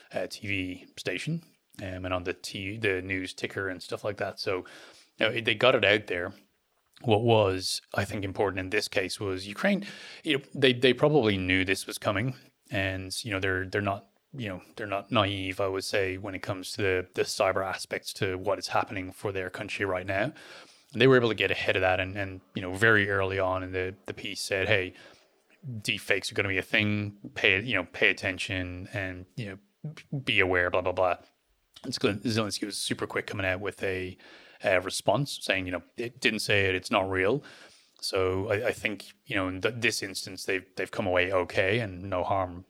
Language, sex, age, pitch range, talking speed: English, male, 20-39, 95-110 Hz, 215 wpm